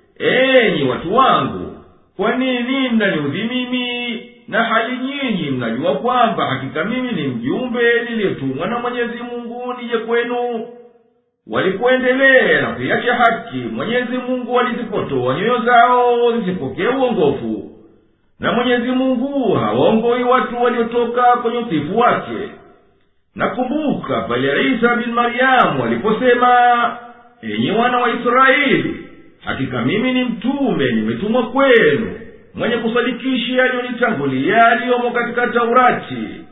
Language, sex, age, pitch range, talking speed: Swahili, male, 50-69, 230-250 Hz, 105 wpm